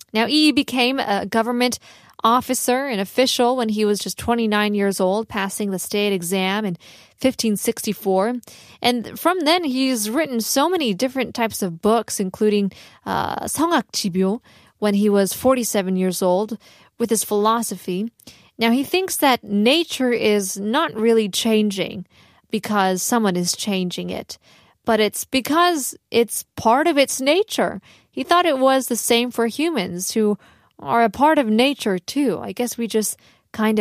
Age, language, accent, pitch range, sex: 20-39, Korean, American, 200-255 Hz, female